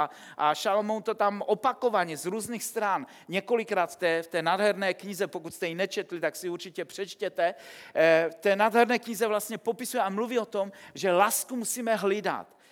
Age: 40-59